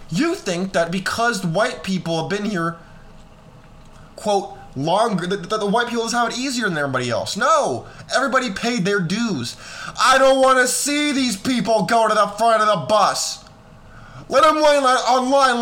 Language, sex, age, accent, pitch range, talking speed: English, male, 20-39, American, 190-250 Hz, 175 wpm